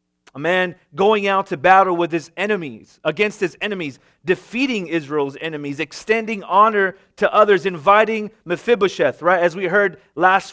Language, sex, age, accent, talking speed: English, male, 30-49, American, 150 wpm